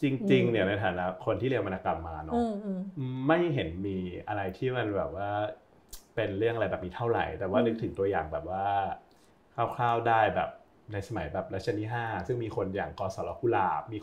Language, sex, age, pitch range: Thai, male, 30-49, 100-125 Hz